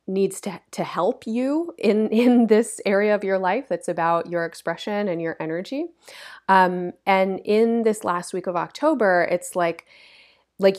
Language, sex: English, female